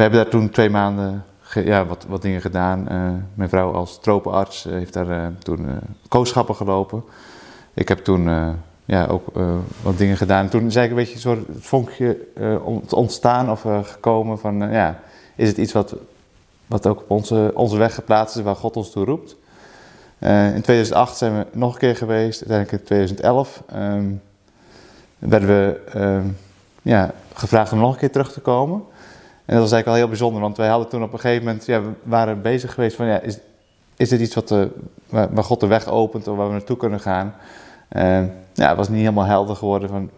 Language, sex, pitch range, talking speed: Dutch, male, 100-115 Hz, 210 wpm